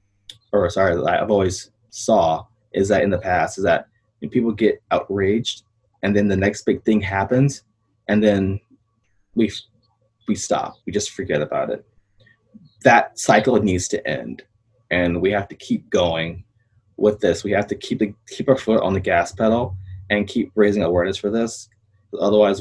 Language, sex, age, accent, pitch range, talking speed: English, male, 20-39, American, 95-115 Hz, 175 wpm